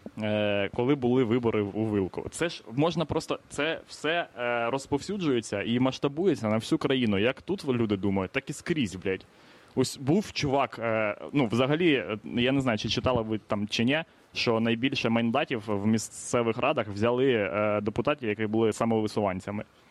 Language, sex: Ukrainian, male